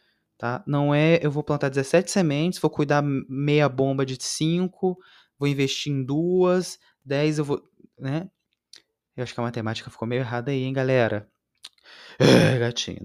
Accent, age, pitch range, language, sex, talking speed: Brazilian, 20-39, 120-180 Hz, Portuguese, male, 155 wpm